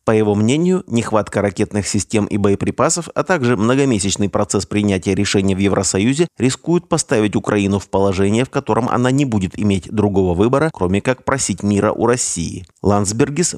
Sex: male